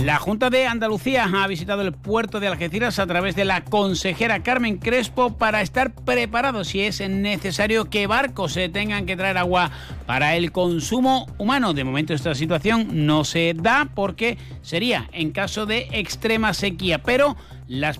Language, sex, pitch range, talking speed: Spanish, male, 170-225 Hz, 165 wpm